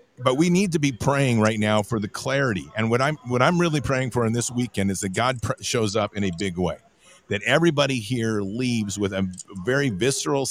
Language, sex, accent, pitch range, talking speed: English, male, American, 100-130 Hz, 215 wpm